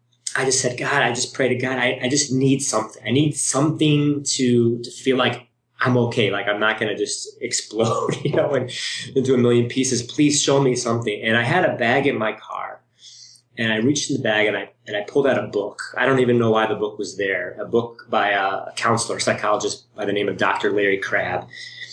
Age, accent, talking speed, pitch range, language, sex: 30-49, American, 235 wpm, 110-130 Hz, English, male